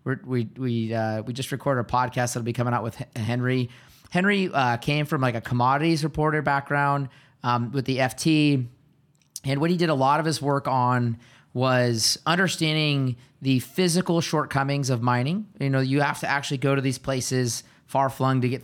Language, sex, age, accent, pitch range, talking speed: English, male, 30-49, American, 125-145 Hz, 195 wpm